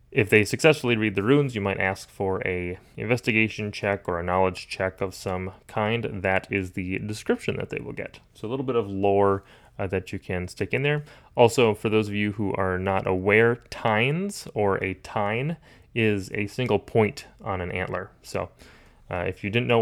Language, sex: English, male